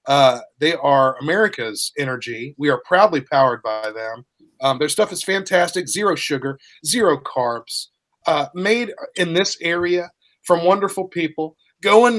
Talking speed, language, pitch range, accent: 145 wpm, English, 145-195 Hz, American